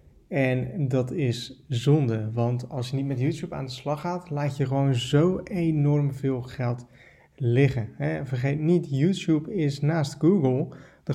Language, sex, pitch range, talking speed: Dutch, male, 125-155 Hz, 155 wpm